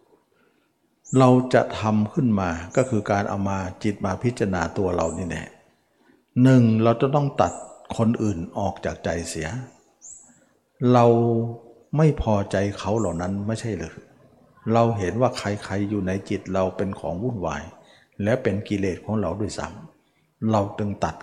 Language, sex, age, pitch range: Thai, male, 60-79, 90-115 Hz